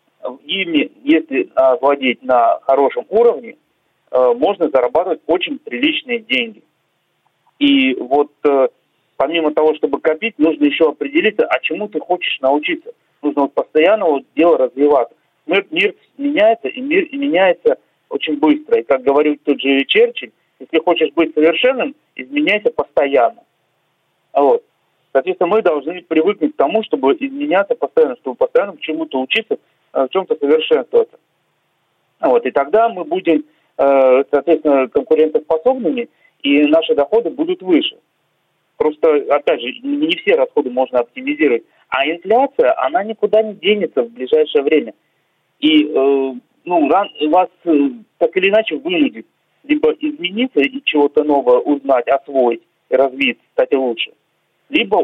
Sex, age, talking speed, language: male, 40-59, 125 wpm, Russian